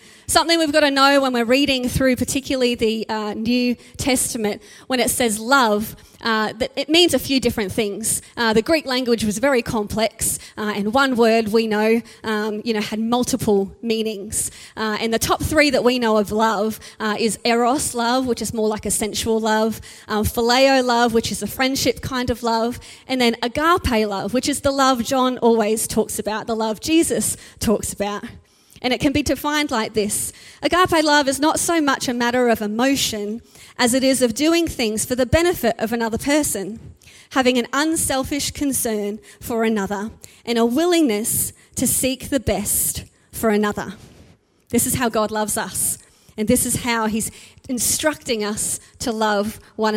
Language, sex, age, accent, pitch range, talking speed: English, female, 20-39, Australian, 220-270 Hz, 185 wpm